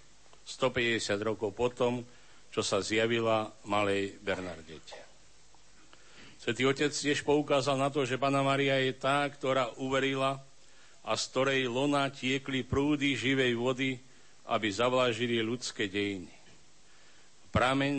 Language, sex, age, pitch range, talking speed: Slovak, male, 50-69, 110-130 Hz, 115 wpm